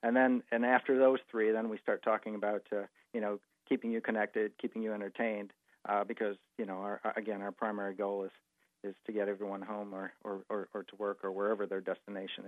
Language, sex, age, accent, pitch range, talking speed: English, male, 50-69, American, 105-120 Hz, 215 wpm